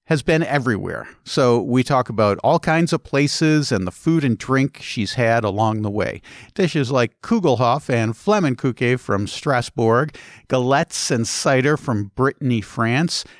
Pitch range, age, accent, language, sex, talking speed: 115-150 Hz, 50-69, American, English, male, 150 wpm